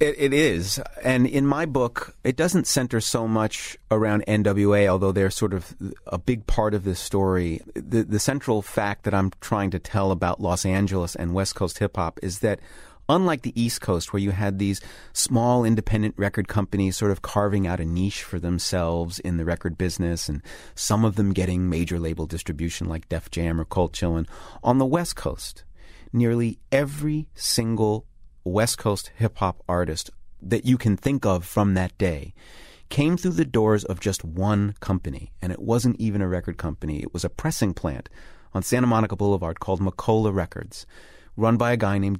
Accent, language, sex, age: American, English, male, 30-49